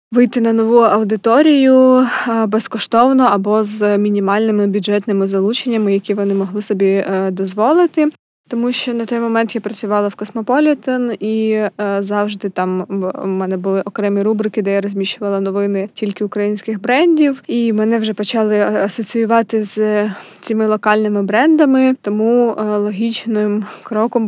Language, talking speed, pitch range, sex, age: Ukrainian, 125 wpm, 205-225 Hz, female, 20-39